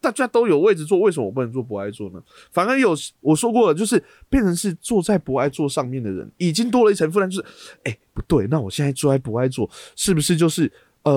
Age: 20-39